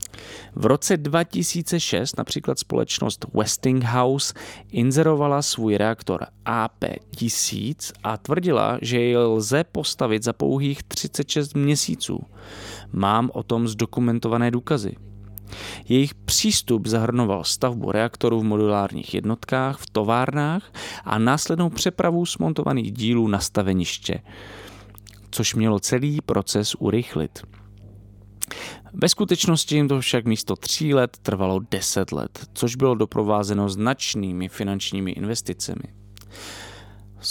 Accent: Czech